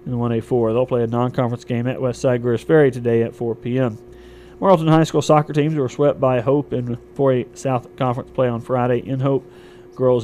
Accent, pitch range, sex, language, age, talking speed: American, 120-145 Hz, male, English, 40-59, 205 wpm